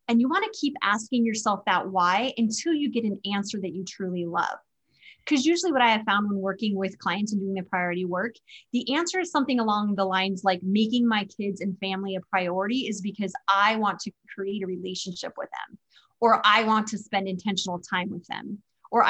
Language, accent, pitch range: English, American, 190-240 Hz